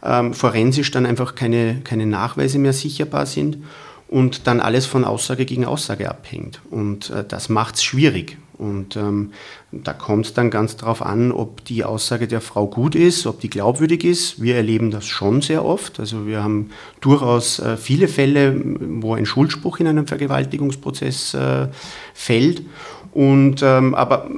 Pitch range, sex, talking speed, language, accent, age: 115-140 Hz, male, 160 wpm, German, German, 40-59